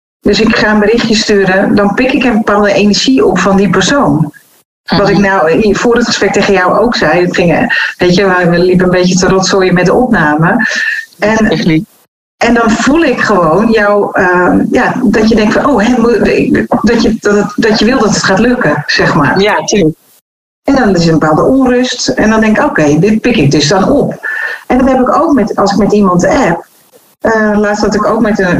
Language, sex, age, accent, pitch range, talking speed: Dutch, female, 40-59, Dutch, 185-235 Hz, 215 wpm